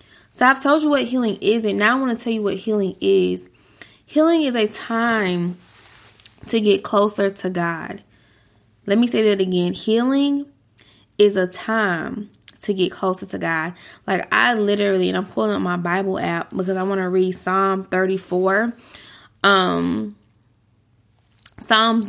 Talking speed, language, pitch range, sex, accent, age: 160 wpm, English, 180-220 Hz, female, American, 20-39